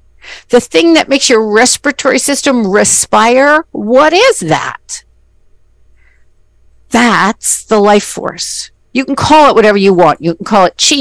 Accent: American